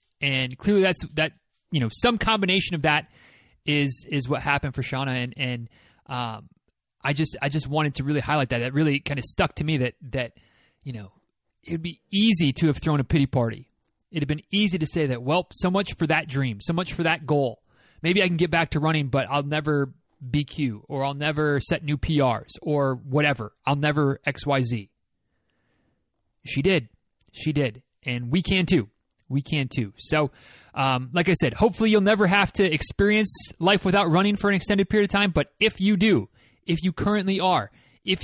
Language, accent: English, American